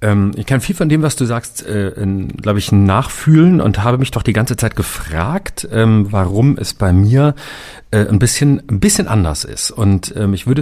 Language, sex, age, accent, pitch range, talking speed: German, male, 40-59, German, 90-115 Hz, 175 wpm